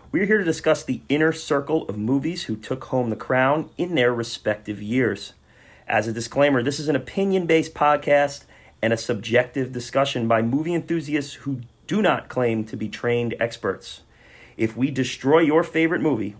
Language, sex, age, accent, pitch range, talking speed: English, male, 30-49, American, 115-150 Hz, 175 wpm